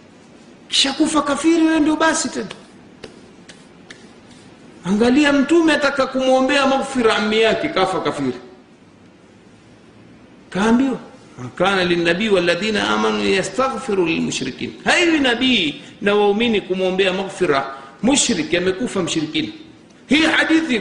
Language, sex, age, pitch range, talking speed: Swahili, male, 50-69, 195-265 Hz, 65 wpm